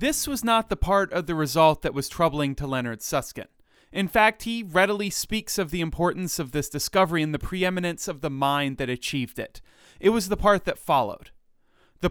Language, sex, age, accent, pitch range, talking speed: English, male, 30-49, American, 135-185 Hz, 205 wpm